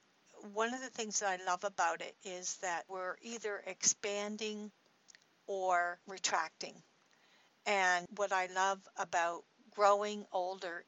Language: English